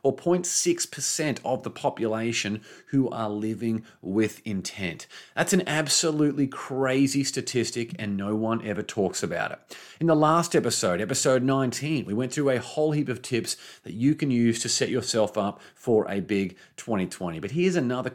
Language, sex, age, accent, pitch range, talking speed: English, male, 30-49, Australian, 110-140 Hz, 170 wpm